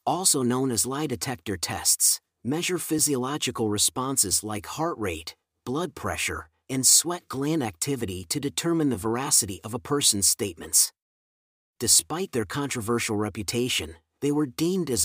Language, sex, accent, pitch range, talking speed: English, male, American, 105-145 Hz, 135 wpm